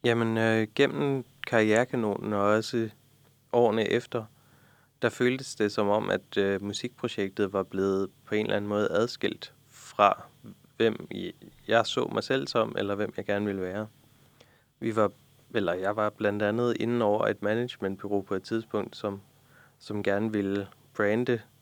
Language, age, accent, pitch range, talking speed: Danish, 30-49, native, 100-125 Hz, 155 wpm